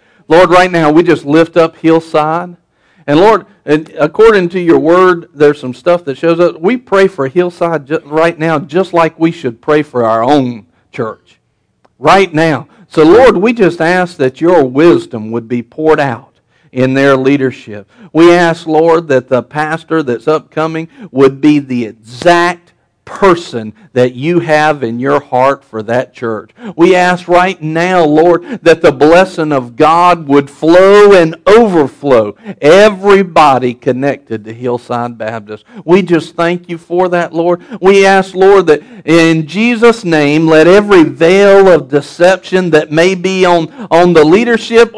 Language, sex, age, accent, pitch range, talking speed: English, male, 50-69, American, 140-180 Hz, 160 wpm